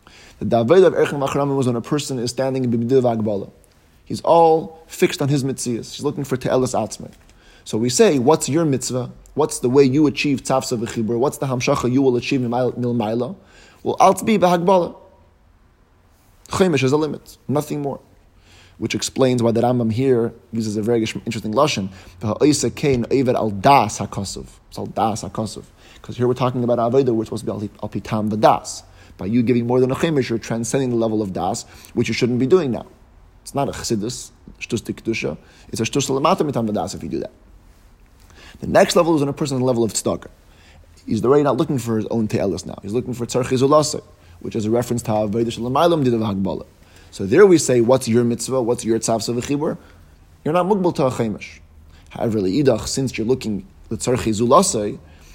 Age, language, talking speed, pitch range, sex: 20-39, English, 180 wpm, 105-135 Hz, male